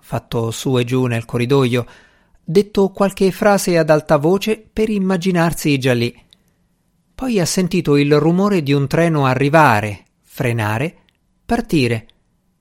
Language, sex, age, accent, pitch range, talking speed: Italian, male, 50-69, native, 120-180 Hz, 130 wpm